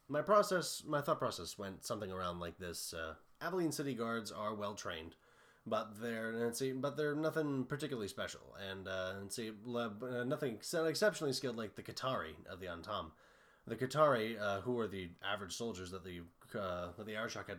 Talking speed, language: 180 wpm, English